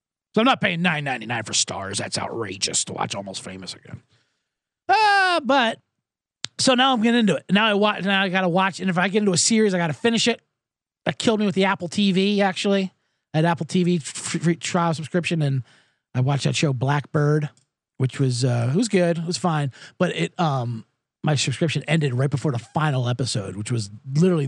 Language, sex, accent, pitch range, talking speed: English, male, American, 125-180 Hz, 210 wpm